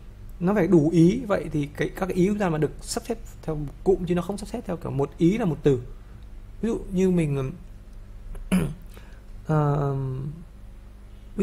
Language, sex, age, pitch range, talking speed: Vietnamese, male, 20-39, 125-180 Hz, 195 wpm